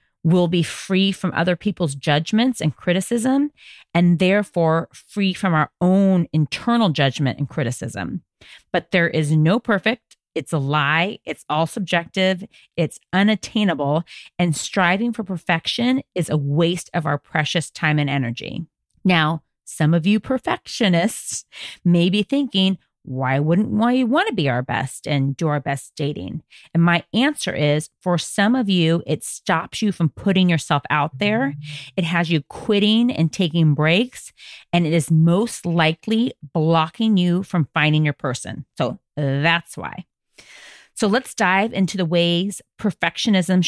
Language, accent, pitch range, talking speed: English, American, 155-200 Hz, 150 wpm